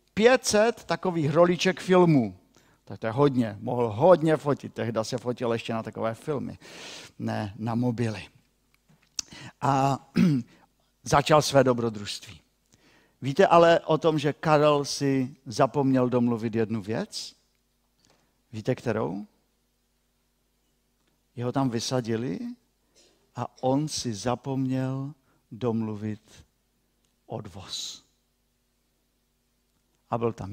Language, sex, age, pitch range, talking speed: Czech, male, 50-69, 115-160 Hz, 100 wpm